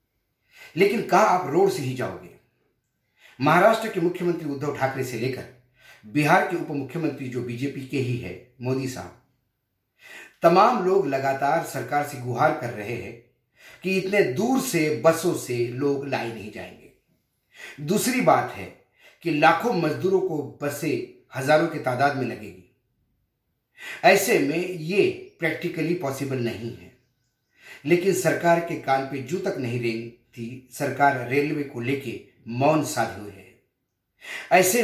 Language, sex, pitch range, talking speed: Hindi, male, 120-165 Hz, 140 wpm